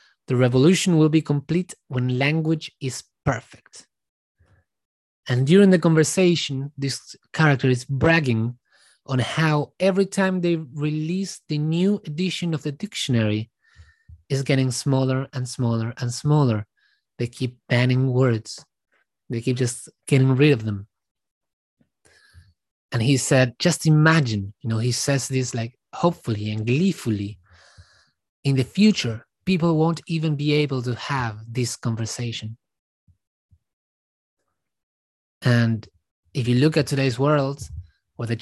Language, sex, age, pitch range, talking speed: English, male, 20-39, 115-150 Hz, 130 wpm